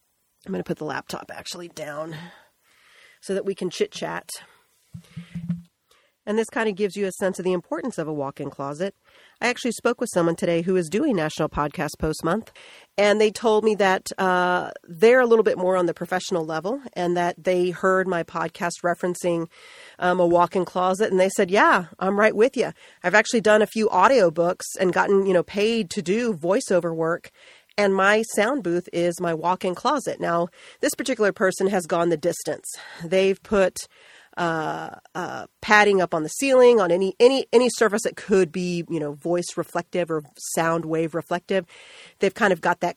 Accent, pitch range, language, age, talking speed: American, 170-205 Hz, English, 40-59, 195 wpm